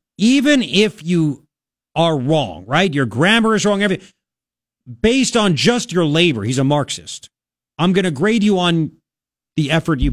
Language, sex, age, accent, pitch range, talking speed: English, male, 40-59, American, 130-190 Hz, 165 wpm